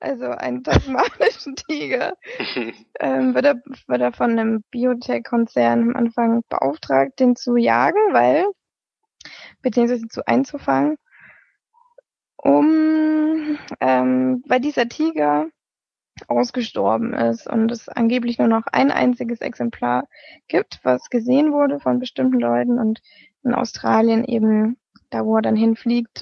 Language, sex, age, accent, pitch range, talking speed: German, female, 20-39, German, 215-265 Hz, 120 wpm